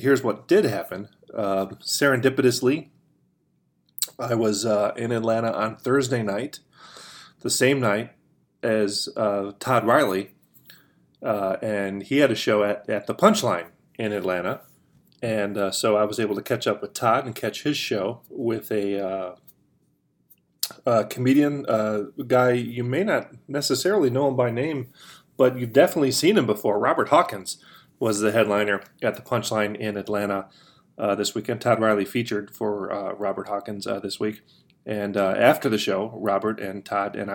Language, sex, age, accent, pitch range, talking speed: English, male, 30-49, American, 105-125 Hz, 160 wpm